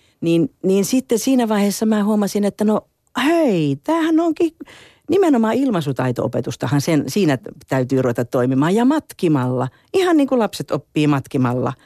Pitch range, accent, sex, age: 140-215 Hz, native, female, 50-69